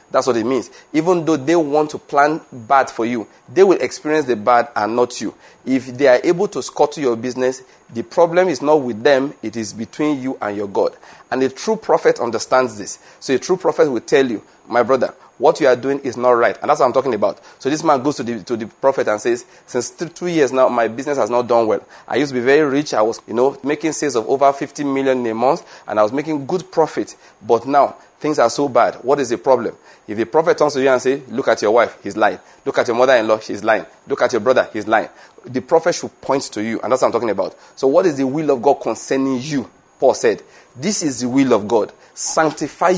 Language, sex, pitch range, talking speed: English, male, 125-155 Hz, 255 wpm